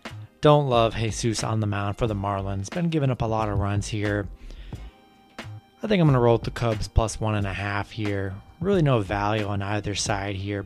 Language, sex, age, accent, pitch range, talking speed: English, male, 20-39, American, 105-125 Hz, 220 wpm